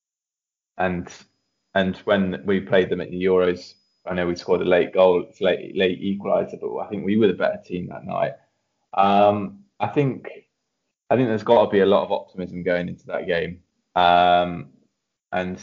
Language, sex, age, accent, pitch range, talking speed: English, male, 20-39, British, 90-100 Hz, 190 wpm